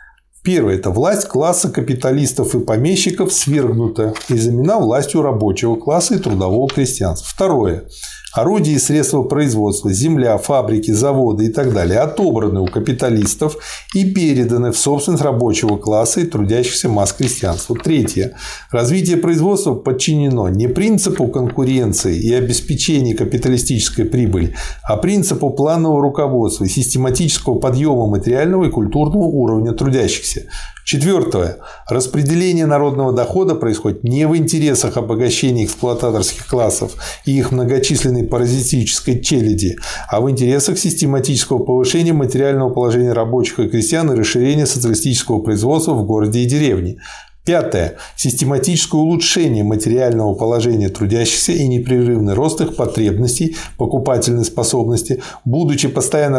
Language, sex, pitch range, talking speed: Russian, male, 115-150 Hz, 120 wpm